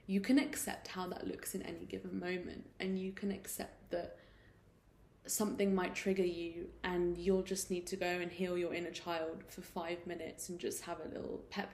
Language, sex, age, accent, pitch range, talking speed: English, female, 20-39, British, 175-195 Hz, 200 wpm